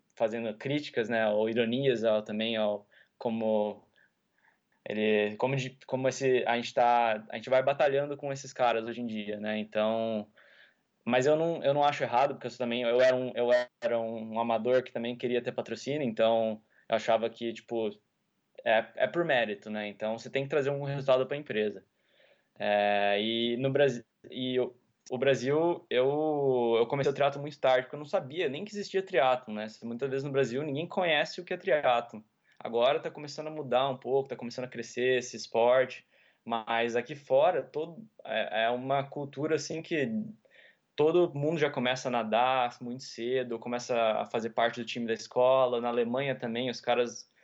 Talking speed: 190 wpm